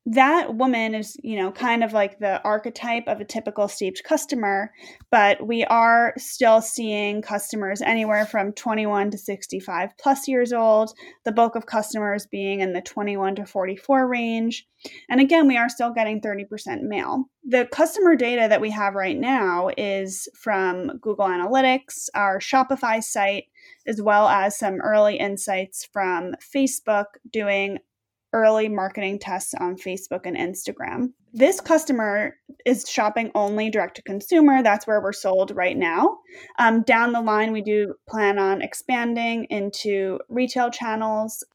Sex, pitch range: female, 205-255 Hz